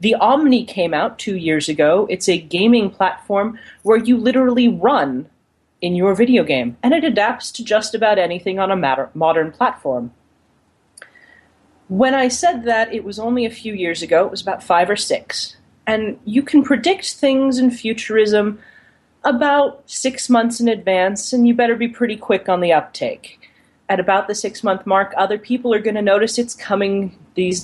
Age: 30-49